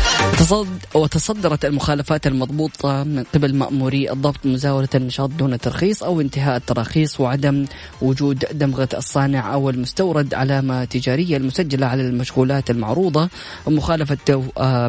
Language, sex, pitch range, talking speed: Arabic, female, 125-145 Hz, 110 wpm